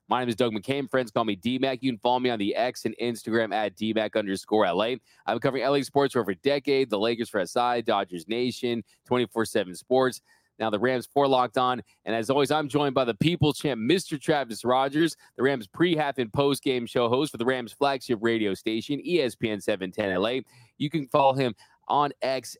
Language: English